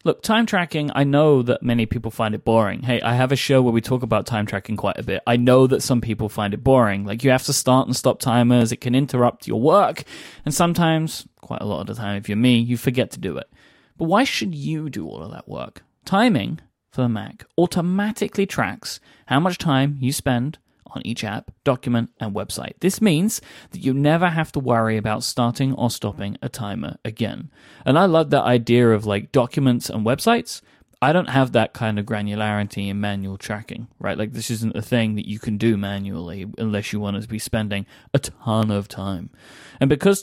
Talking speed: 220 wpm